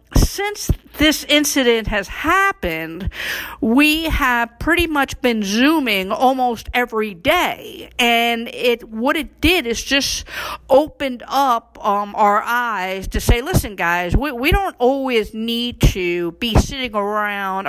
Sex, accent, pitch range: female, American, 205-265 Hz